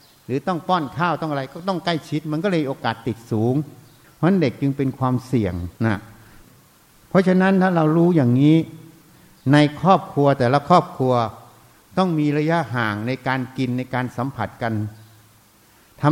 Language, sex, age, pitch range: Thai, male, 60-79, 120-155 Hz